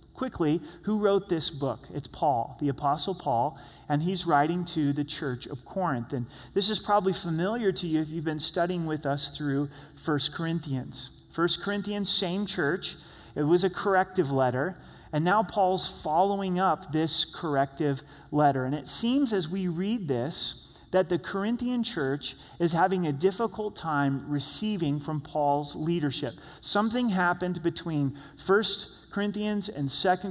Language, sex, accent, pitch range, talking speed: English, male, American, 145-190 Hz, 155 wpm